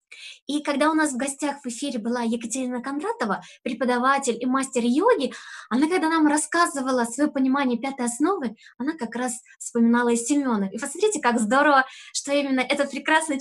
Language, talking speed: Russian, 165 wpm